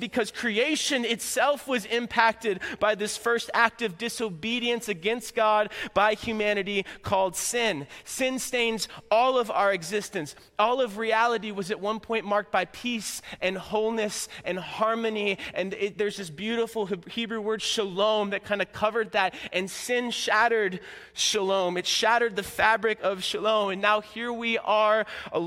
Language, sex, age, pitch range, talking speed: English, male, 20-39, 180-225 Hz, 155 wpm